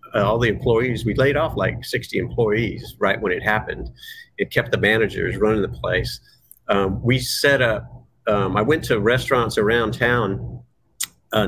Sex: male